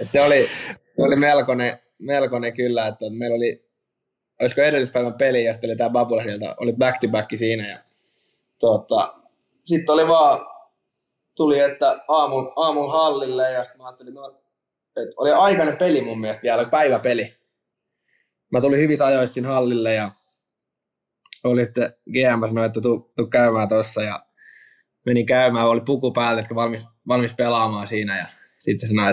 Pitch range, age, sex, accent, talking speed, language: 105-125 Hz, 20-39, male, native, 150 wpm, Finnish